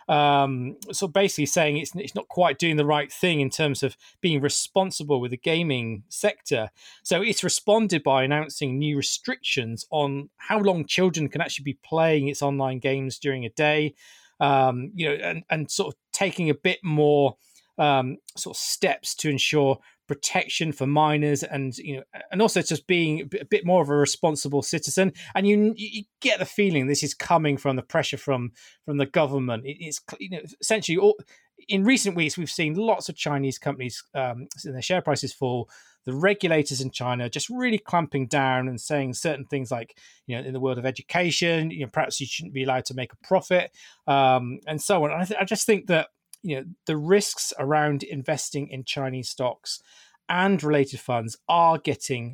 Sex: male